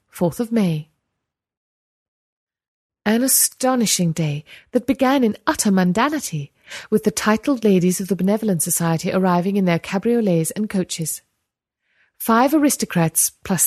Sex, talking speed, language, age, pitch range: female, 125 wpm, English, 30-49, 175-240 Hz